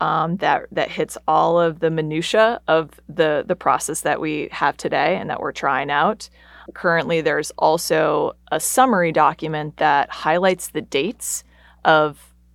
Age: 30-49